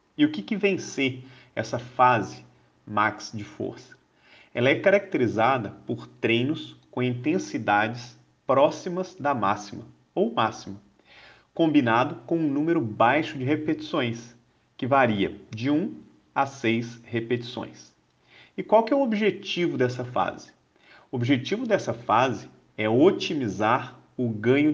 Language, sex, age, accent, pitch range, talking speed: Portuguese, male, 40-59, Brazilian, 110-160 Hz, 130 wpm